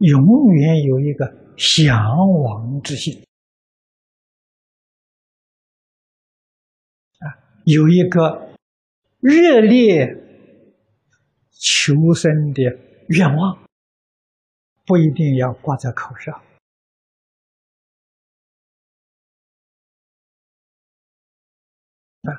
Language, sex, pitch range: Chinese, male, 120-180 Hz